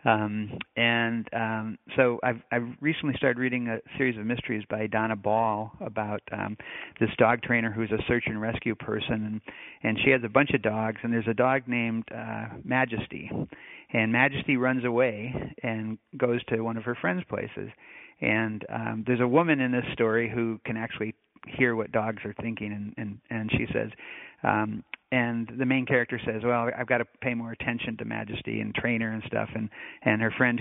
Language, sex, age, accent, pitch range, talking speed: English, male, 50-69, American, 110-125 Hz, 190 wpm